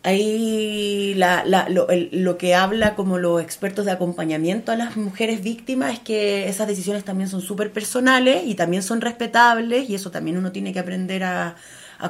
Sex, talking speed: female, 190 wpm